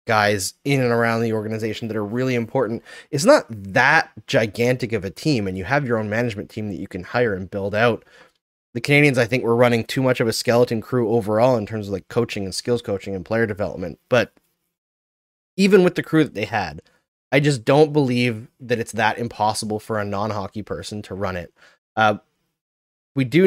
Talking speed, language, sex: 210 wpm, English, male